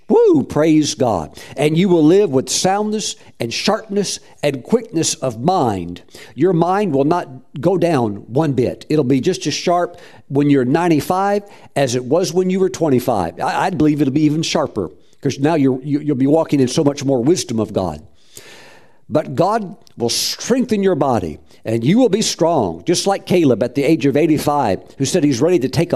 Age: 50-69